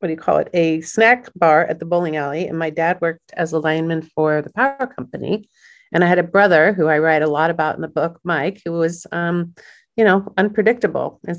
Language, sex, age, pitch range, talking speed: English, female, 40-59, 160-185 Hz, 235 wpm